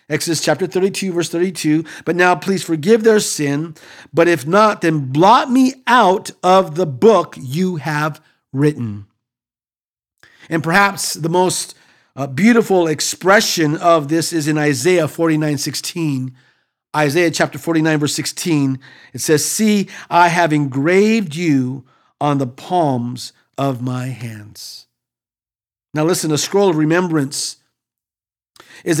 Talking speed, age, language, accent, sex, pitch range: 130 wpm, 50-69, English, American, male, 145-185 Hz